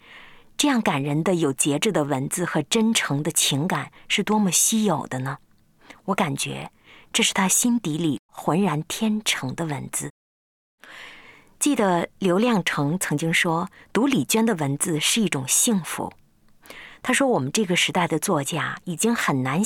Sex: female